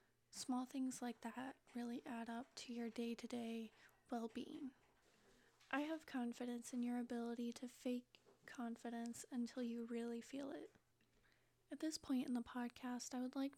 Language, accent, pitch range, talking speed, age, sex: English, American, 240-260 Hz, 150 wpm, 20-39, female